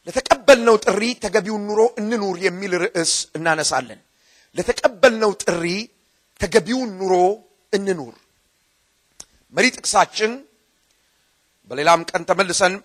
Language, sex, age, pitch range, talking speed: Amharic, male, 40-59, 185-250 Hz, 100 wpm